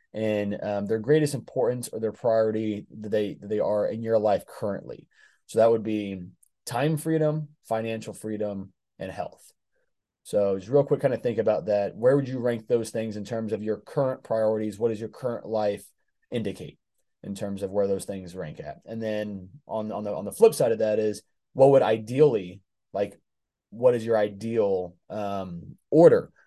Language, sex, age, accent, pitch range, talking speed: English, male, 20-39, American, 100-120 Hz, 190 wpm